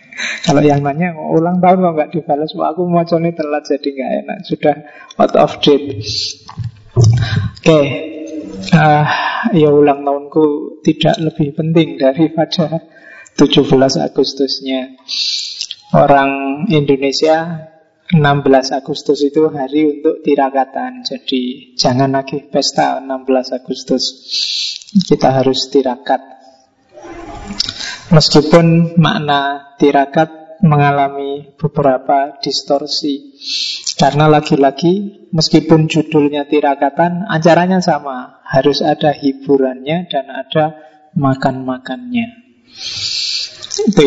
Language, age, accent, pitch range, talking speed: Indonesian, 20-39, native, 135-165 Hz, 95 wpm